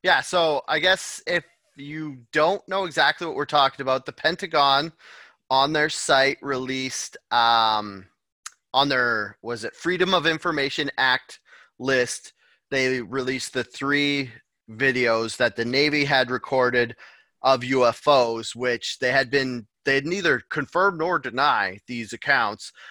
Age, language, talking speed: 30-49, English, 135 wpm